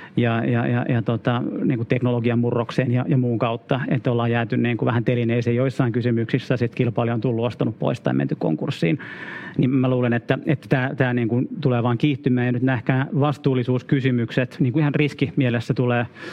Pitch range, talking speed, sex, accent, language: 120-135 Hz, 175 wpm, male, native, Finnish